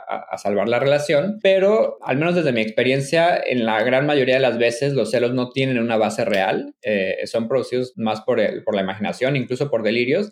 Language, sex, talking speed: Spanish, male, 210 wpm